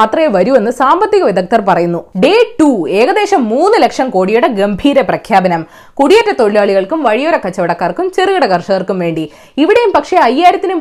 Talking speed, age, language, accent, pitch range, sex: 115 wpm, 20-39, Malayalam, native, 205-320 Hz, female